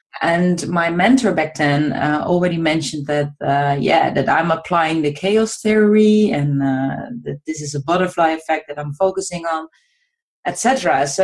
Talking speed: 165 wpm